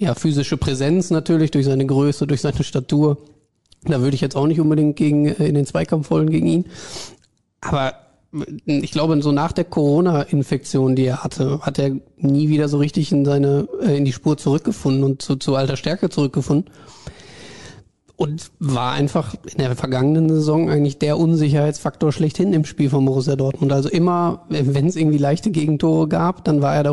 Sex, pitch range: male, 140-160 Hz